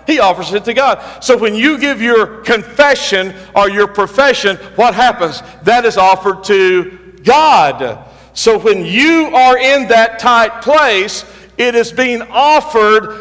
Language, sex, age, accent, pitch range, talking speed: English, male, 50-69, American, 140-235 Hz, 150 wpm